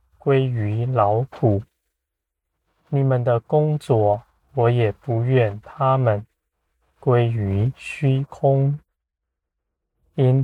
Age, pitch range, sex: 20-39, 80-125 Hz, male